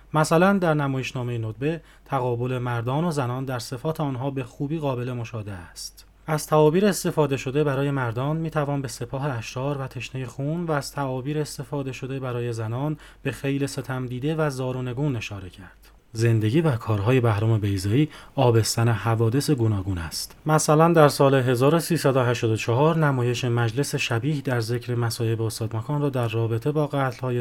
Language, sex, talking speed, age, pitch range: Persian, male, 155 wpm, 30-49, 120-150 Hz